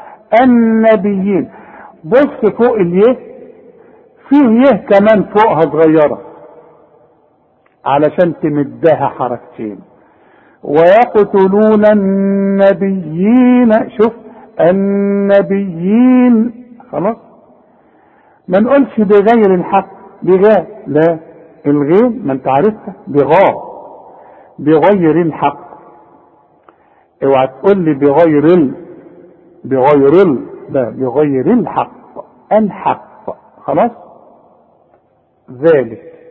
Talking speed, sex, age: 70 wpm, male, 50-69